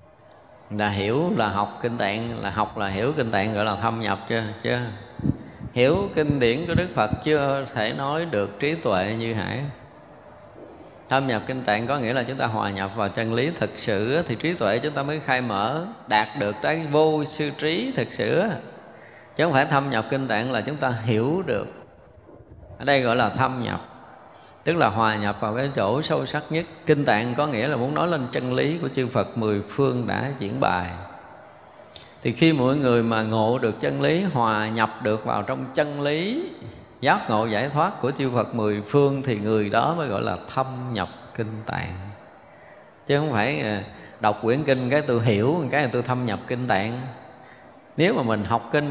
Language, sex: Vietnamese, male